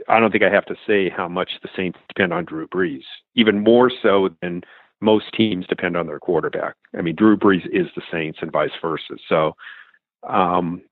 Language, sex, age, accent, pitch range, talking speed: English, male, 50-69, American, 95-115 Hz, 205 wpm